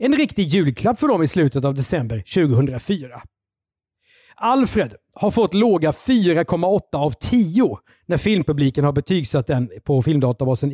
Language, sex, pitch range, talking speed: Swedish, male, 140-210 Hz, 135 wpm